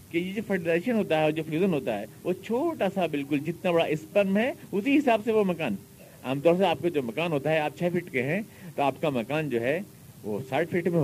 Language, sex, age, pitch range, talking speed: Urdu, male, 50-69, 140-200 Hz, 230 wpm